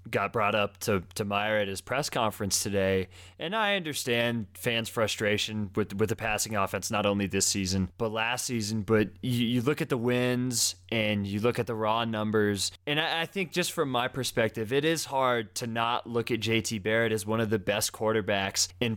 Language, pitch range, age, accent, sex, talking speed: English, 105-130 Hz, 20-39, American, male, 210 wpm